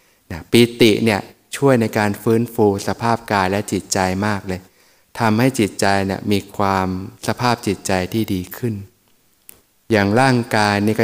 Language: Thai